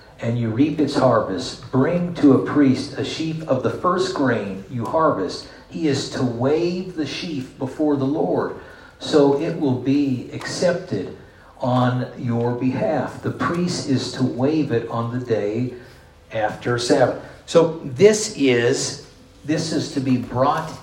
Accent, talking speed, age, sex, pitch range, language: American, 155 wpm, 50-69, male, 120-145 Hz, English